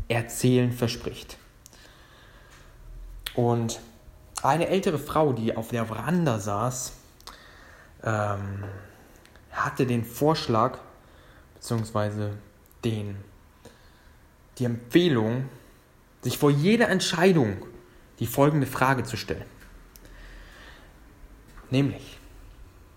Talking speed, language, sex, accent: 75 wpm, German, male, German